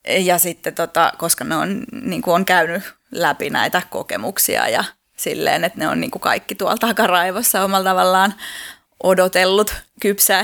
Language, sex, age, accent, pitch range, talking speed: Finnish, female, 20-39, native, 175-215 Hz, 120 wpm